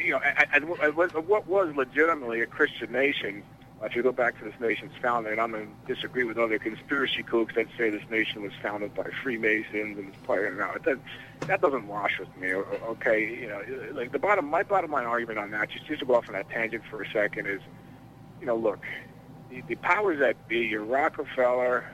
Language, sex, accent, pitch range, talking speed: English, male, American, 110-140 Hz, 220 wpm